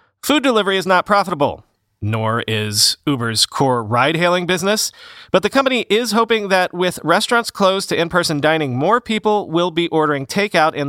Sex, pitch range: male, 140-190 Hz